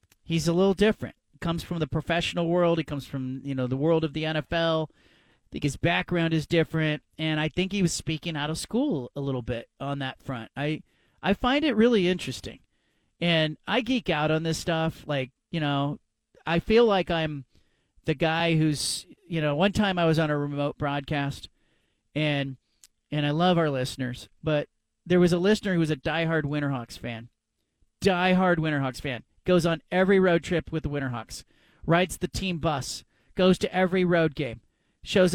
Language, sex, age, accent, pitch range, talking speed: English, male, 40-59, American, 145-185 Hz, 190 wpm